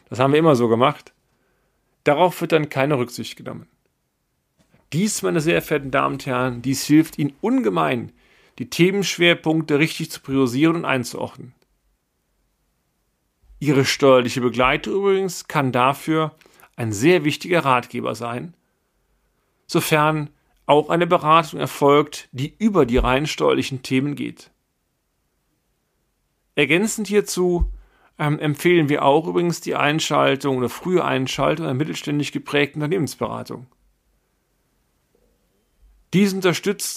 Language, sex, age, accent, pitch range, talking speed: German, male, 40-59, German, 130-170 Hz, 115 wpm